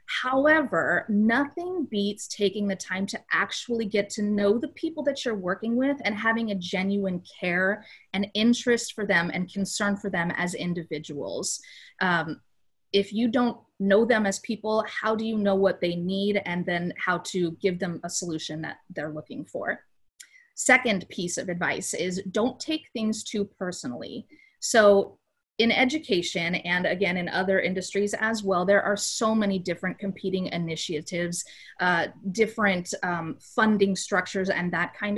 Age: 30-49